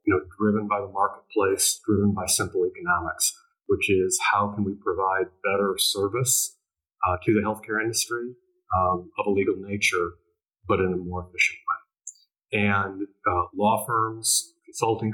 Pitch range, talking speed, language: 95-125 Hz, 155 wpm, English